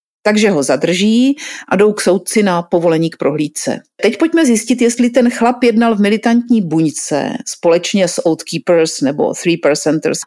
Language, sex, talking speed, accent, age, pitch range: Czech, female, 165 wpm, native, 40-59, 175-235 Hz